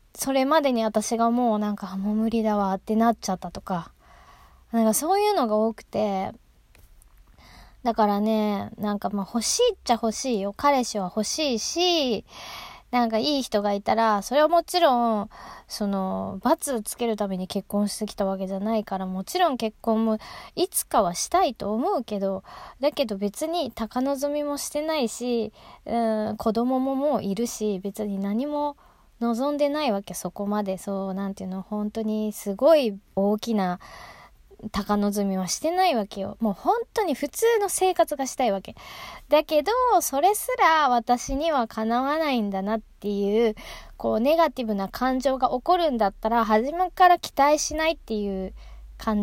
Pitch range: 205-285 Hz